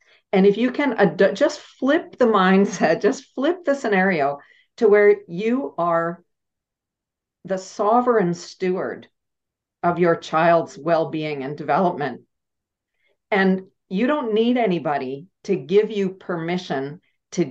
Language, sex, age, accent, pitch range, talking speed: English, female, 50-69, American, 150-195 Hz, 120 wpm